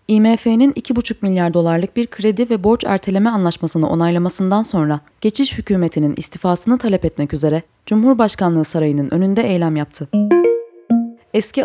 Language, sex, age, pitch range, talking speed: Turkish, female, 20-39, 160-225 Hz, 130 wpm